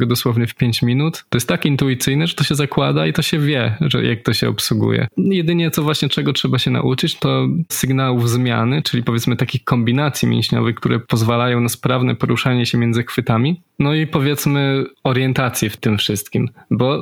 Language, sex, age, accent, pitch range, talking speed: Polish, male, 20-39, native, 115-130 Hz, 185 wpm